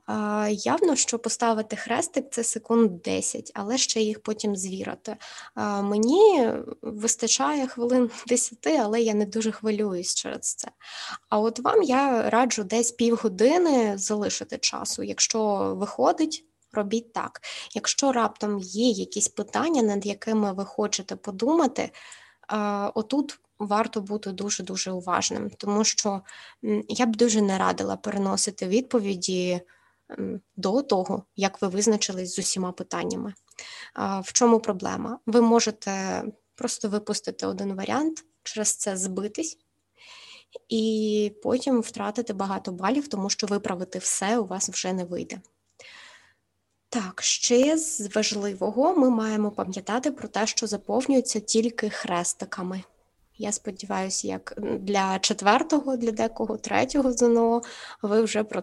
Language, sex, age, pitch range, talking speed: Ukrainian, female, 20-39, 200-240 Hz, 120 wpm